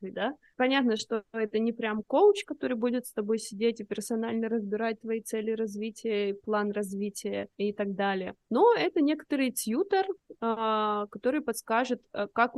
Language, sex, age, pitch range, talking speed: Russian, female, 20-39, 210-245 Hz, 145 wpm